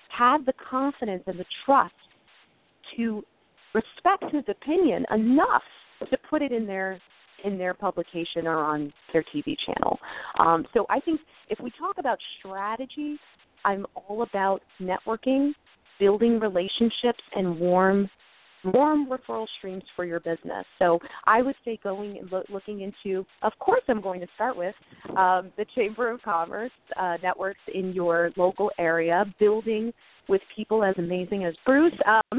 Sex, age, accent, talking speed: female, 30-49, American, 150 wpm